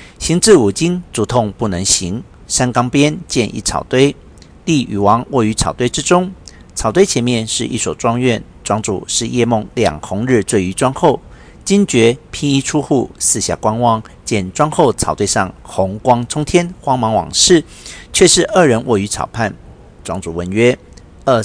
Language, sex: Chinese, male